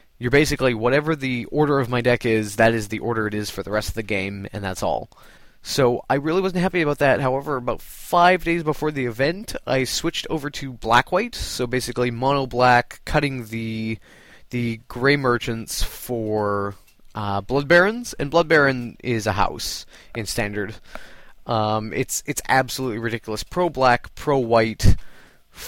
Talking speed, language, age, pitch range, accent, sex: 165 wpm, English, 20-39, 110-145 Hz, American, male